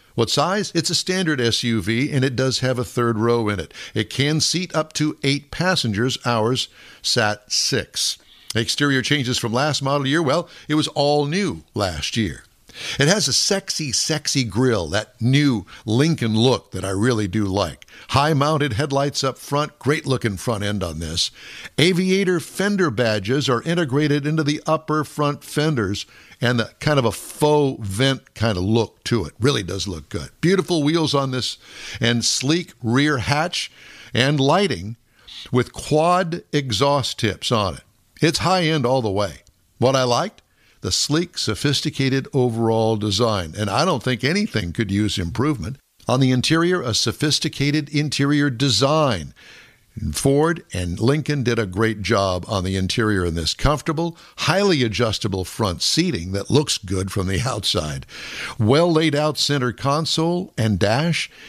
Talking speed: 160 wpm